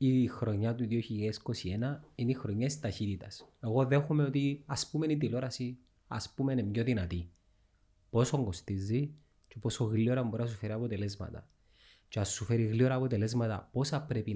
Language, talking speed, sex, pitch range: Greek, 165 wpm, male, 100-125 Hz